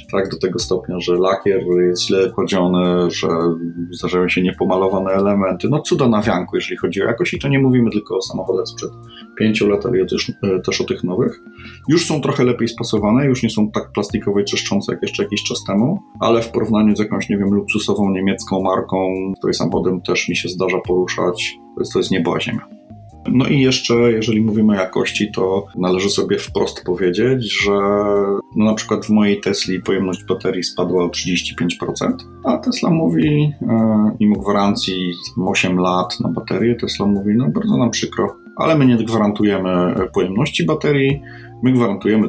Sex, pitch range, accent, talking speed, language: male, 90-115 Hz, native, 175 wpm, Polish